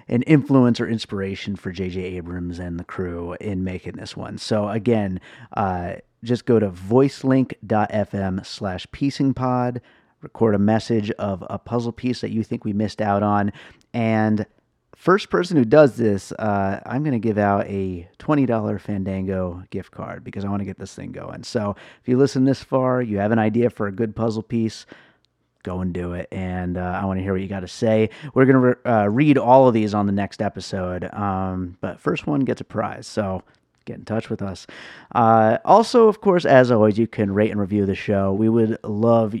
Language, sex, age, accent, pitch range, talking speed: English, male, 30-49, American, 100-120 Hz, 205 wpm